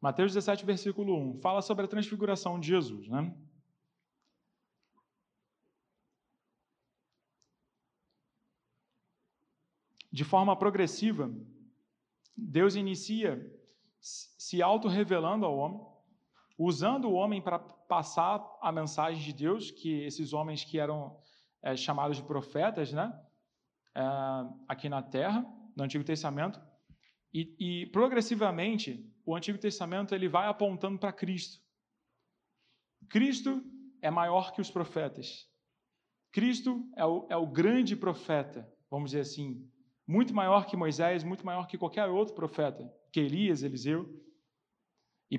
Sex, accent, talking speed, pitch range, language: male, Brazilian, 110 wpm, 155-205 Hz, Portuguese